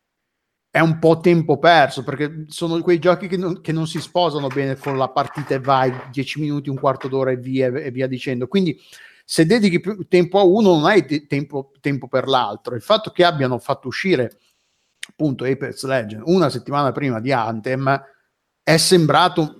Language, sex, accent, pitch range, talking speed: Italian, male, native, 130-150 Hz, 185 wpm